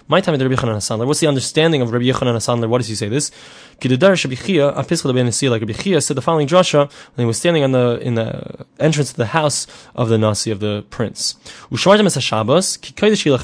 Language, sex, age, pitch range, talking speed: English, male, 20-39, 120-165 Hz, 190 wpm